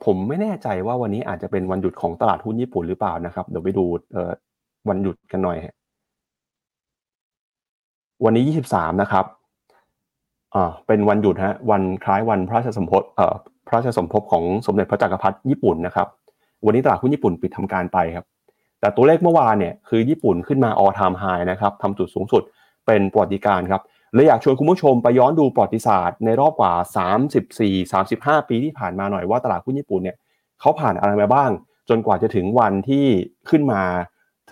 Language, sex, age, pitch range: Thai, male, 30-49, 95-130 Hz